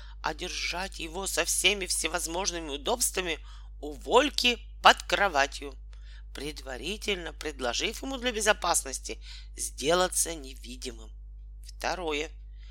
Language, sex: Russian, male